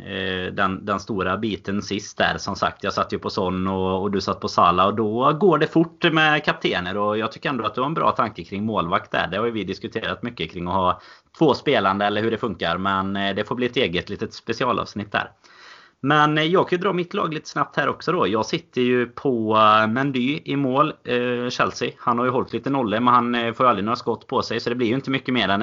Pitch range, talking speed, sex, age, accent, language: 100-125 Hz, 250 wpm, male, 30-49, native, Swedish